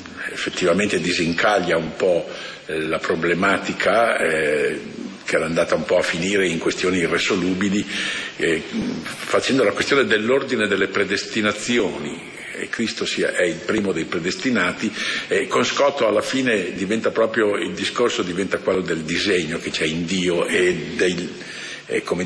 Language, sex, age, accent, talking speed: Italian, male, 50-69, native, 145 wpm